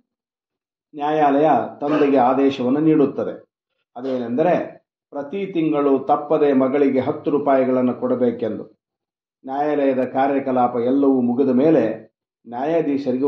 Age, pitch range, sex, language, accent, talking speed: 50-69, 125-145 Hz, male, Kannada, native, 80 wpm